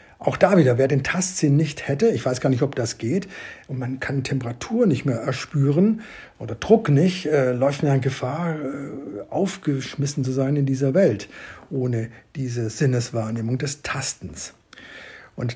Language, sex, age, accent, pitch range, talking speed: German, male, 60-79, German, 130-165 Hz, 160 wpm